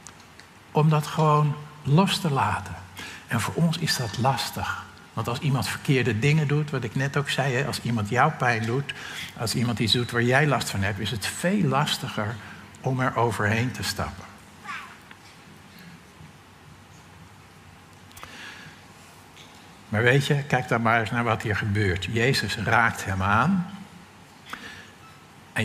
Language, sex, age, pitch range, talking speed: Dutch, male, 60-79, 110-150 Hz, 145 wpm